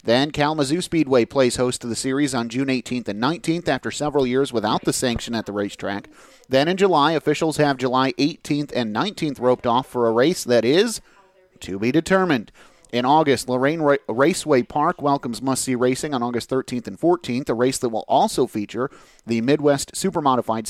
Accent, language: American, English